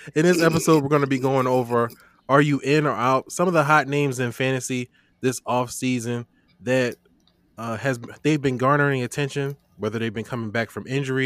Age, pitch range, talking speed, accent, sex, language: 20-39, 110-145 Hz, 195 wpm, American, male, English